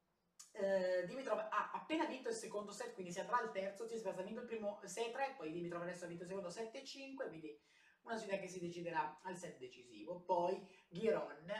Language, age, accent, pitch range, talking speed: Italian, 30-49, native, 165-230 Hz, 205 wpm